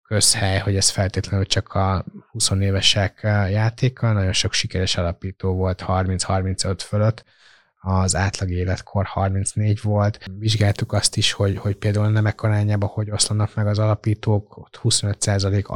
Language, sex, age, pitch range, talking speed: Hungarian, male, 20-39, 95-105 Hz, 135 wpm